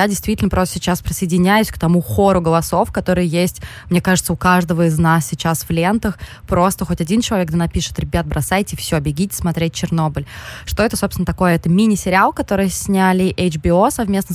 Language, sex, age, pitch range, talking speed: Russian, female, 20-39, 170-200 Hz, 170 wpm